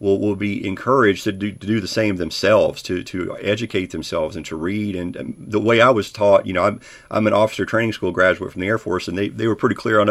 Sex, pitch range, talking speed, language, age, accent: male, 95-115 Hz, 260 wpm, English, 40-59, American